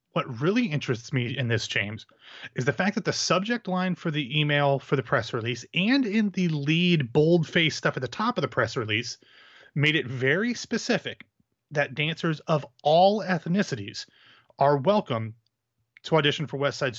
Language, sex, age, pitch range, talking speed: English, male, 30-49, 130-165 Hz, 175 wpm